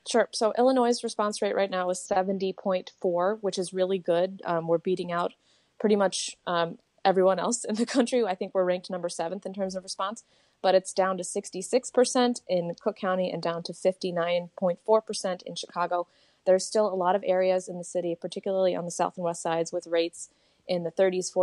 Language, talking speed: English, 195 wpm